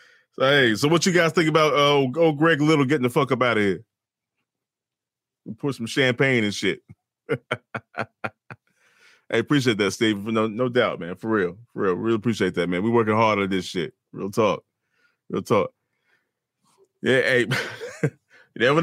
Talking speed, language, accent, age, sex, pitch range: 180 wpm, English, American, 30-49, male, 110-165 Hz